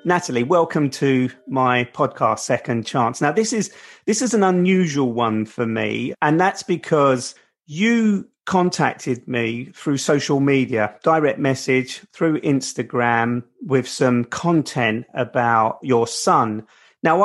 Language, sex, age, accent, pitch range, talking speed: English, male, 40-59, British, 120-150 Hz, 130 wpm